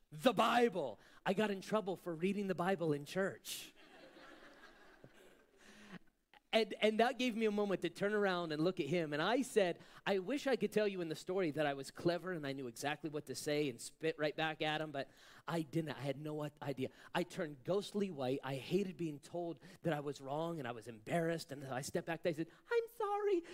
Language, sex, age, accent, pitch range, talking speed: English, male, 30-49, American, 170-235 Hz, 225 wpm